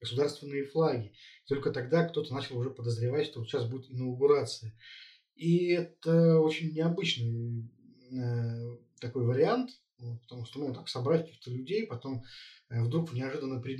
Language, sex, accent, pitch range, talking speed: Russian, male, native, 120-145 Hz, 150 wpm